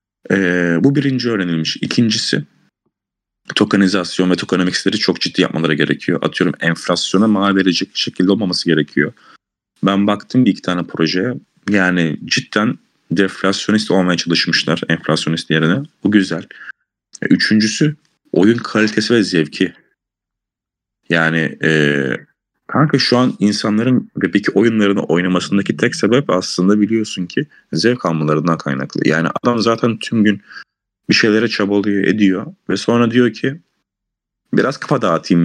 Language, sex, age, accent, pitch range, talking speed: Turkish, male, 30-49, native, 85-110 Hz, 120 wpm